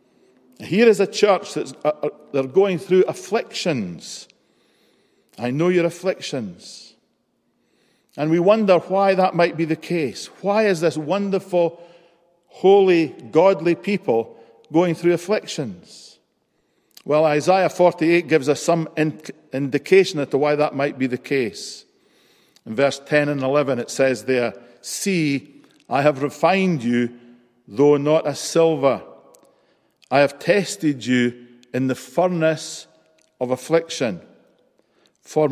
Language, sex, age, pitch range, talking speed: English, male, 50-69, 130-175 Hz, 125 wpm